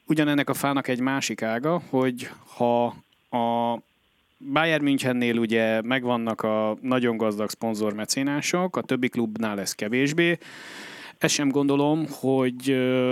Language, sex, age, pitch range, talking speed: Hungarian, male, 30-49, 110-140 Hz, 120 wpm